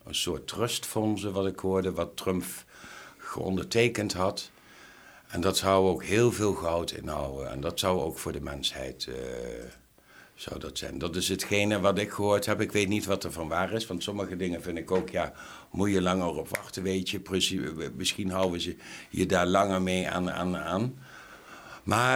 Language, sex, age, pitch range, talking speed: Dutch, male, 60-79, 90-110 Hz, 185 wpm